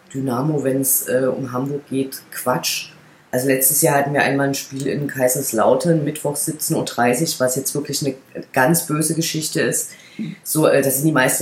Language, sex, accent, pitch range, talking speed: German, female, German, 135-160 Hz, 185 wpm